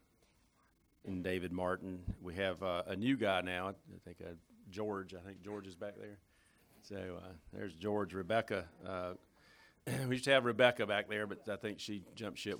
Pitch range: 85-100 Hz